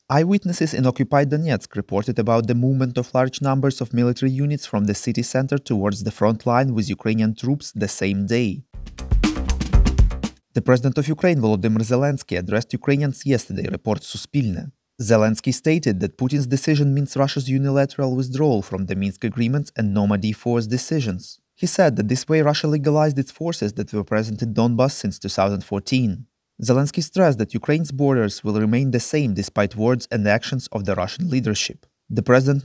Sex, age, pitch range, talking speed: male, 30-49, 110-140 Hz, 165 wpm